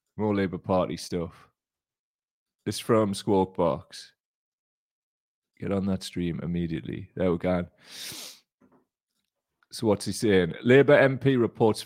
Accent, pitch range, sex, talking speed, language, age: British, 95-115 Hz, male, 115 wpm, English, 30-49